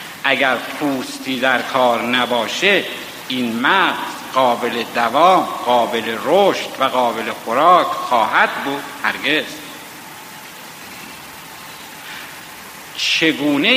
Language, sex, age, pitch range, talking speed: Persian, male, 60-79, 130-200 Hz, 80 wpm